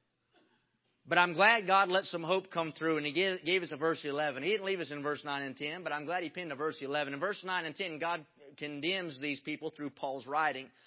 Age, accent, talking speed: 30-49, American, 255 wpm